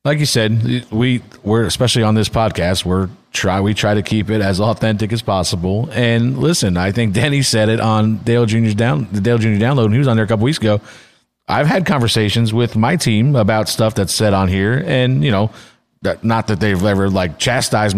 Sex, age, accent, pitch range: male, 40-59, American, 105-125 Hz